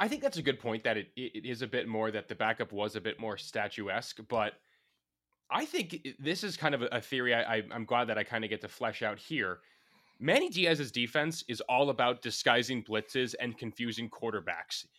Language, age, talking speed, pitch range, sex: English, 20-39, 210 wpm, 110-140 Hz, male